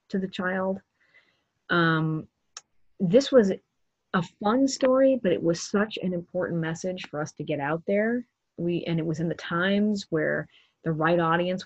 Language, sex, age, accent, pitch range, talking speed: English, female, 30-49, American, 165-195 Hz, 170 wpm